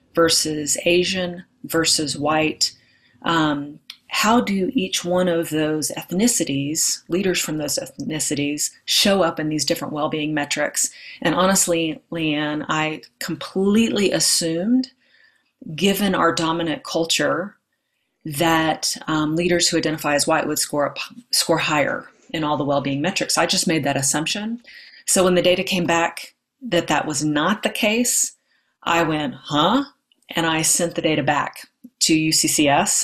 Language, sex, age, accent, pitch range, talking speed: English, female, 30-49, American, 150-180 Hz, 140 wpm